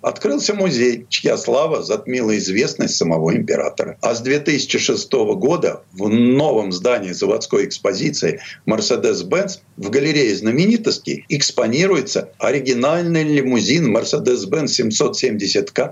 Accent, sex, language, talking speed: native, male, Russian, 100 wpm